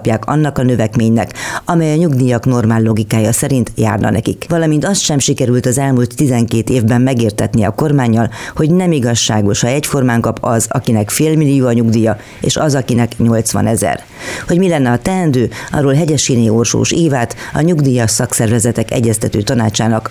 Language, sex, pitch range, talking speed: Hungarian, female, 120-145 Hz, 160 wpm